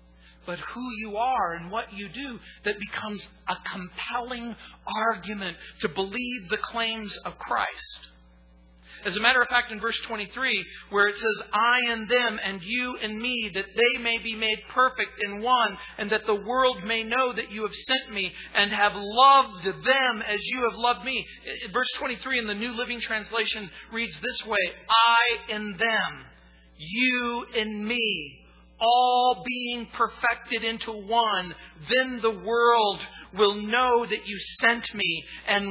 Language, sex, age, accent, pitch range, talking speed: English, male, 50-69, American, 150-235 Hz, 160 wpm